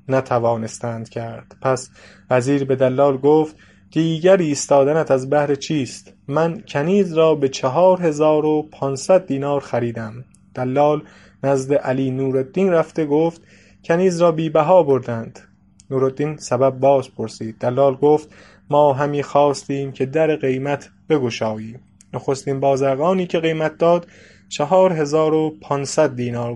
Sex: male